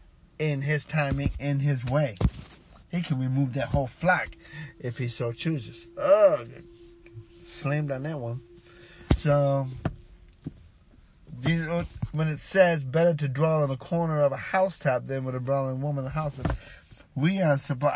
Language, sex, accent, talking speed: English, male, American, 155 wpm